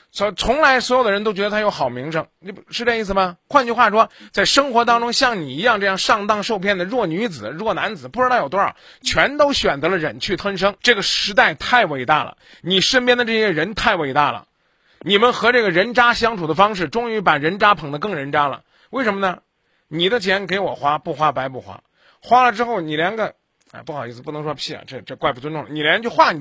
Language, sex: Chinese, male